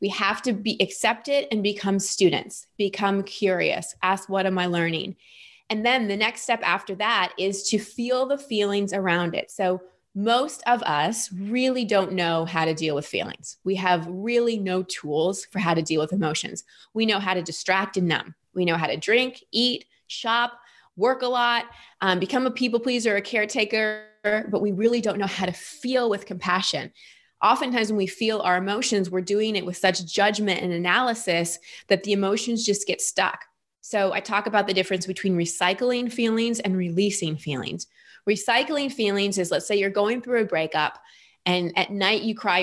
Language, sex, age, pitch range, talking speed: English, female, 20-39, 185-230 Hz, 190 wpm